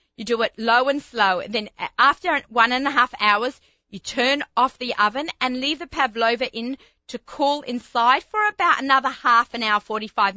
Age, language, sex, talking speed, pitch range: 30-49, English, female, 195 wpm, 185-245 Hz